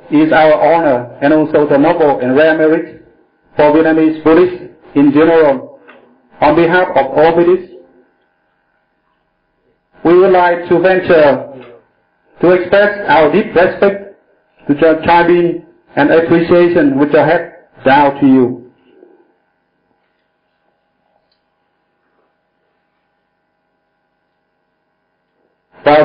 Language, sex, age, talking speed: Vietnamese, male, 60-79, 95 wpm